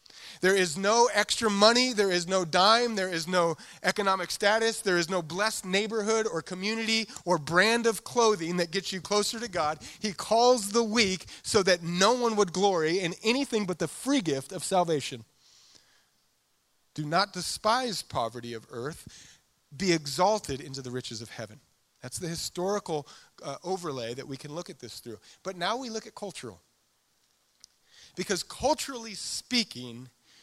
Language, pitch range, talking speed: English, 140-200 Hz, 165 wpm